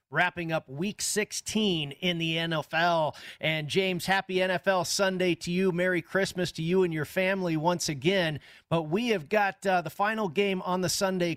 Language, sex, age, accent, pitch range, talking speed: English, male, 40-59, American, 155-190 Hz, 180 wpm